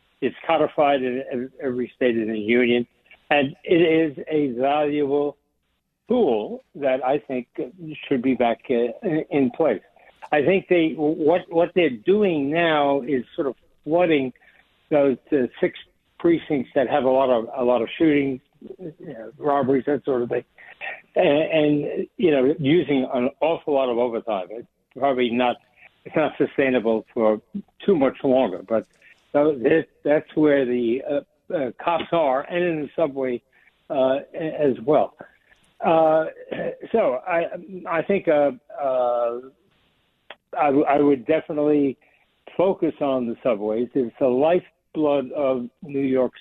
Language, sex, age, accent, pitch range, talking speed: English, male, 60-79, American, 130-155 Hz, 145 wpm